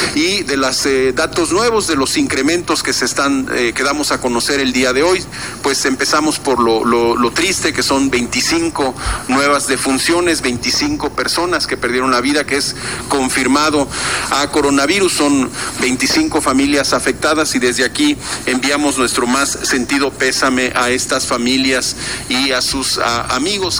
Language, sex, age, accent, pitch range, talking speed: Spanish, male, 40-59, Mexican, 130-155 Hz, 160 wpm